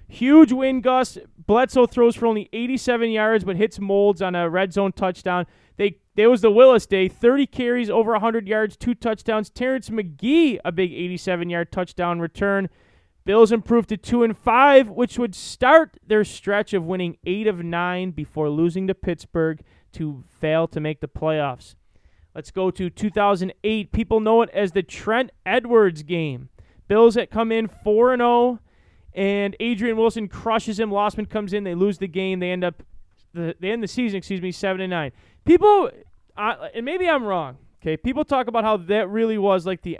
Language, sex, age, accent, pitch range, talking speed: English, male, 20-39, American, 180-235 Hz, 175 wpm